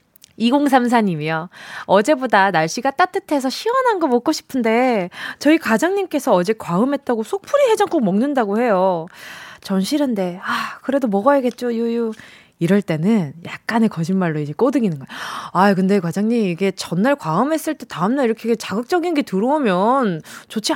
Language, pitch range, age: Korean, 195-290 Hz, 20-39